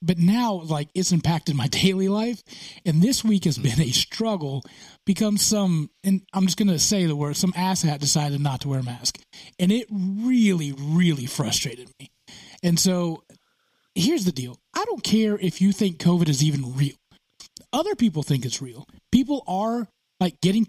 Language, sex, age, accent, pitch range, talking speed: English, male, 30-49, American, 165-230 Hz, 185 wpm